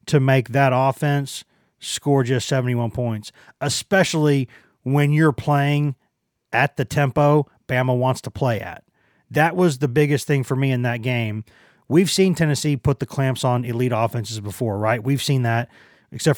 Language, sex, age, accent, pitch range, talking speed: English, male, 30-49, American, 125-150 Hz, 165 wpm